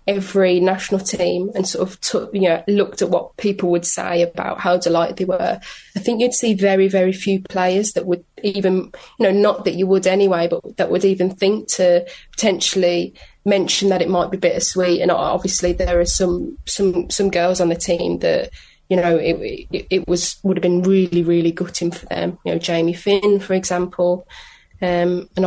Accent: British